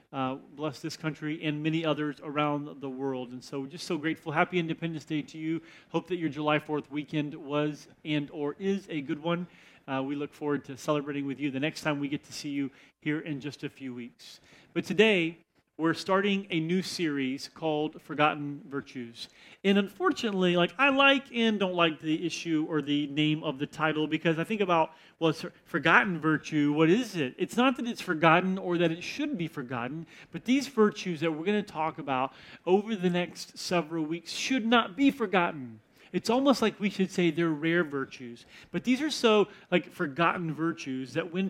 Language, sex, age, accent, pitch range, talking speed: English, male, 40-59, American, 150-190 Hz, 200 wpm